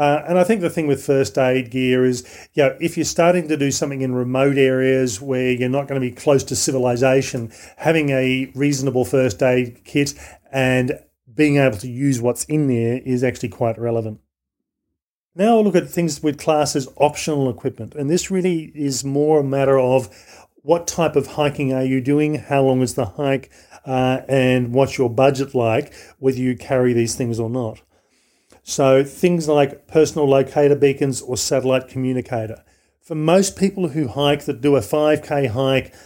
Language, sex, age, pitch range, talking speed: English, male, 40-59, 125-145 Hz, 185 wpm